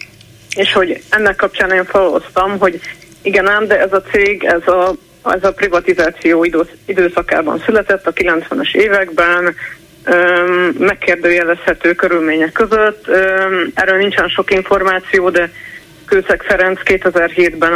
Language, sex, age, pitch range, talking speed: Hungarian, female, 30-49, 170-195 Hz, 125 wpm